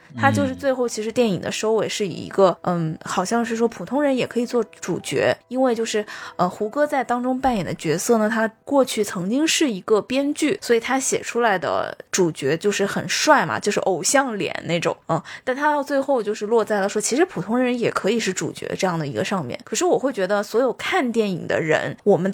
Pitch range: 195-260 Hz